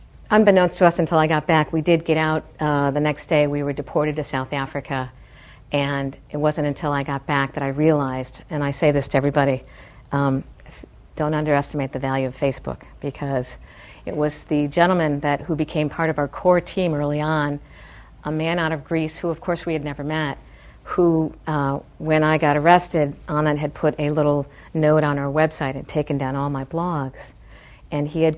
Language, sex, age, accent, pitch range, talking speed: English, female, 50-69, American, 135-155 Hz, 200 wpm